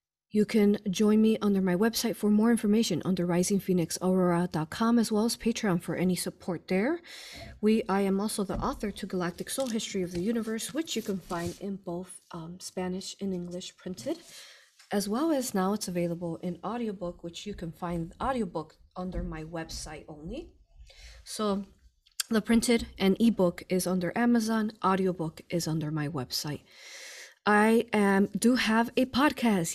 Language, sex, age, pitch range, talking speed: English, female, 40-59, 175-225 Hz, 160 wpm